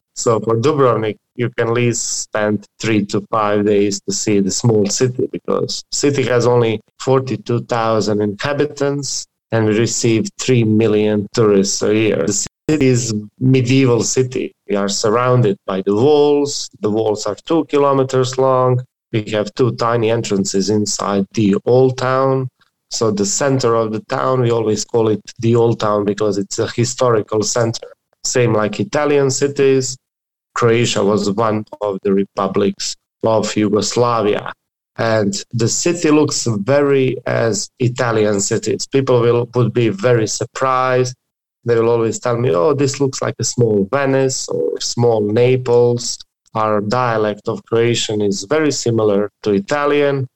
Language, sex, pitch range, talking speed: English, male, 105-130 Hz, 155 wpm